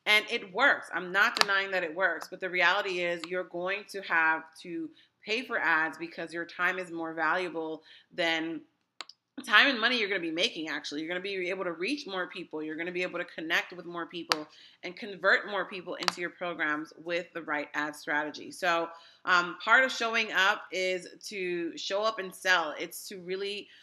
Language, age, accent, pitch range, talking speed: English, 30-49, American, 165-200 Hz, 200 wpm